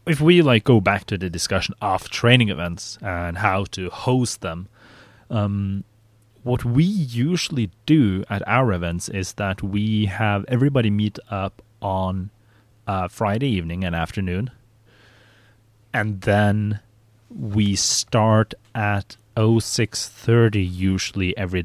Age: 30-49